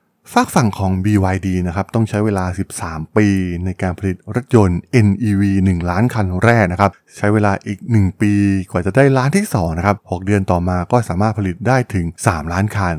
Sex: male